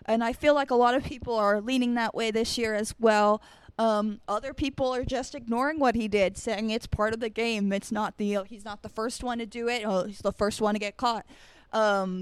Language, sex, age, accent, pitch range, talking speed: English, female, 20-39, American, 205-240 Hz, 255 wpm